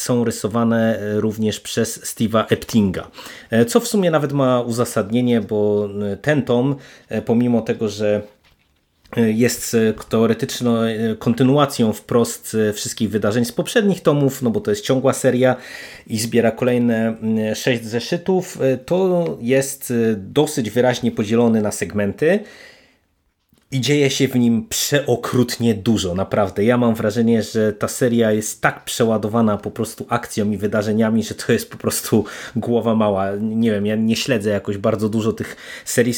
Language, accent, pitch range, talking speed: Polish, native, 105-125 Hz, 140 wpm